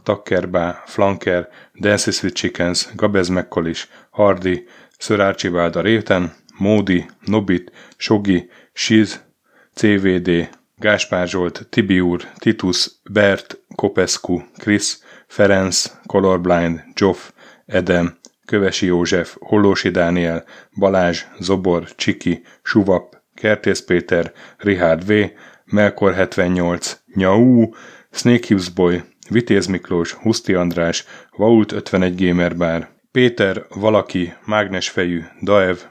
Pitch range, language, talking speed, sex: 90-105 Hz, Hungarian, 85 wpm, male